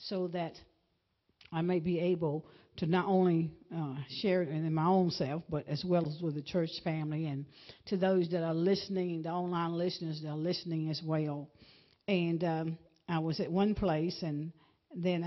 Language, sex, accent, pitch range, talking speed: English, female, American, 155-190 Hz, 185 wpm